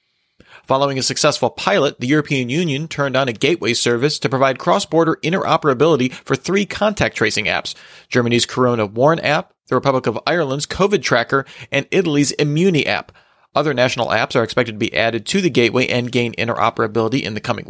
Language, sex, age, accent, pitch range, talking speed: English, male, 40-59, American, 120-150 Hz, 175 wpm